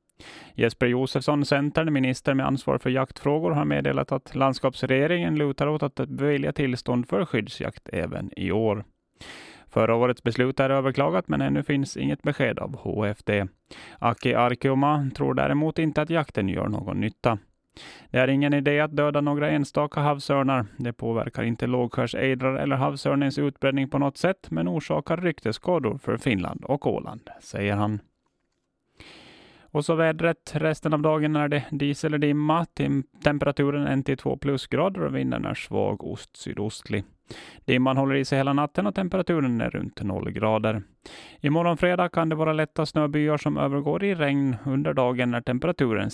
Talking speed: 155 wpm